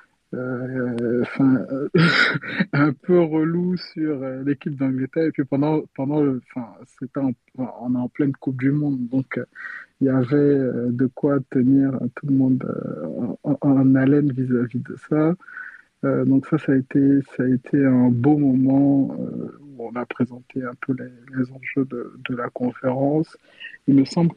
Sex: male